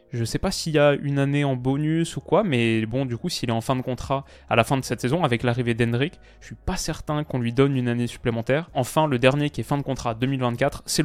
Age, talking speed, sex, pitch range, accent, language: 20-39, 290 wpm, male, 120-145 Hz, French, French